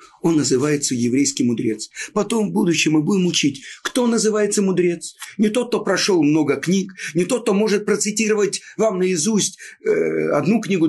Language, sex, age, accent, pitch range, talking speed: Russian, male, 50-69, native, 140-205 Hz, 160 wpm